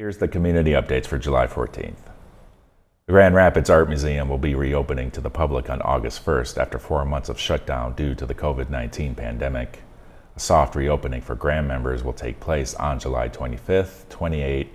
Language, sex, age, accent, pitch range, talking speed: English, male, 40-59, American, 65-80 Hz, 180 wpm